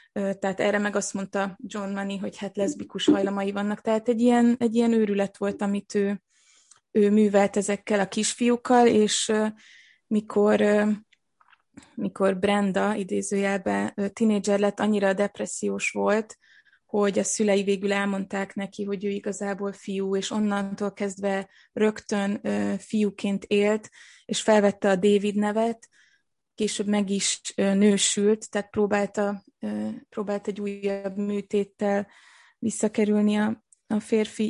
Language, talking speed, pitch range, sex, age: Hungarian, 120 wpm, 200-220 Hz, female, 20-39